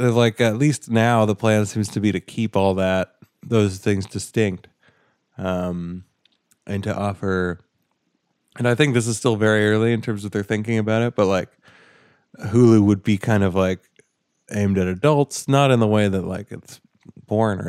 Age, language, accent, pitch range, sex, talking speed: 20-39, English, American, 95-115 Hz, male, 185 wpm